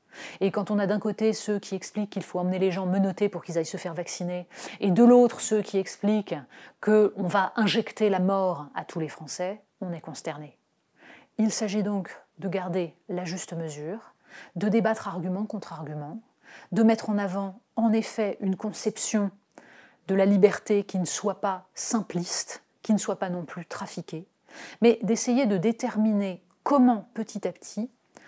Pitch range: 175-220 Hz